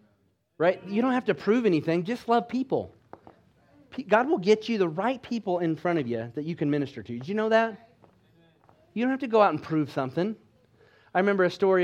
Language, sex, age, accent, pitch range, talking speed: English, male, 30-49, American, 145-200 Hz, 220 wpm